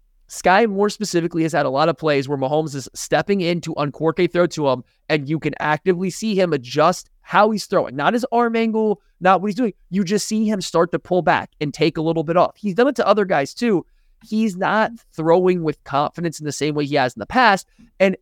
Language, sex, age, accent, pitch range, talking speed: English, male, 20-39, American, 150-190 Hz, 245 wpm